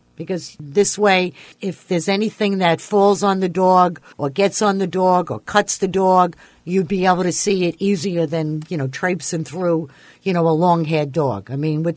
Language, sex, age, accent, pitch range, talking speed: English, female, 50-69, American, 155-195 Hz, 200 wpm